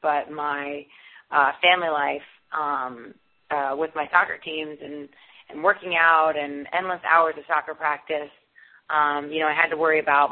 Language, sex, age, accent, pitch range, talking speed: English, female, 30-49, American, 150-165 Hz, 170 wpm